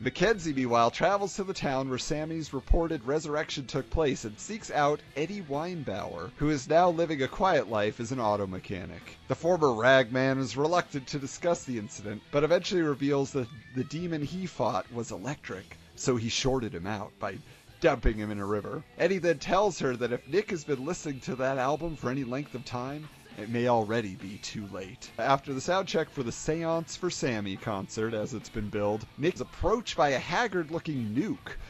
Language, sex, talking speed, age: English, male, 195 wpm, 40-59